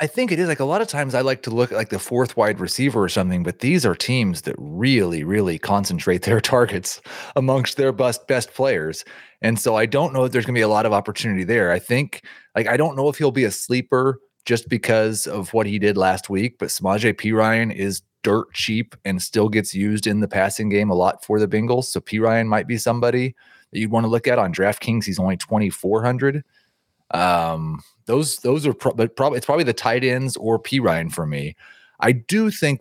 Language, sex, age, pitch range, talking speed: English, male, 30-49, 95-120 Hz, 230 wpm